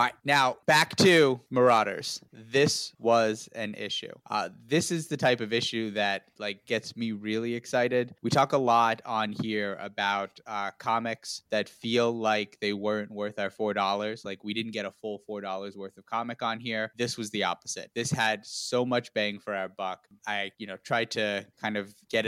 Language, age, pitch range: English, 20-39, 105-120 Hz